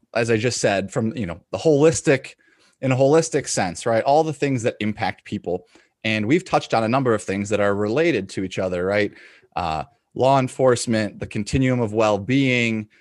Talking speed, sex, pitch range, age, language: 195 wpm, male, 105-130 Hz, 30-49, English